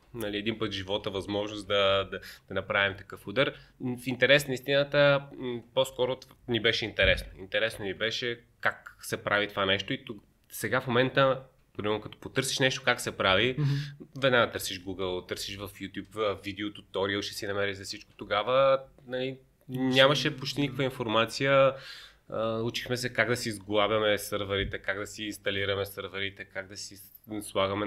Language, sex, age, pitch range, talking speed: Bulgarian, male, 20-39, 95-125 Hz, 160 wpm